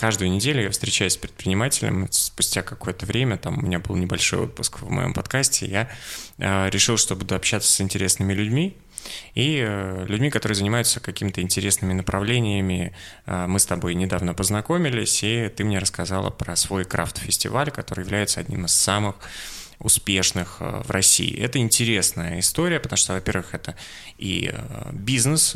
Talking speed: 145 wpm